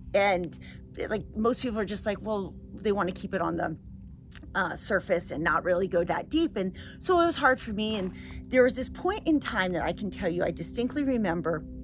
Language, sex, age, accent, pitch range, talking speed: English, female, 30-49, American, 135-215 Hz, 225 wpm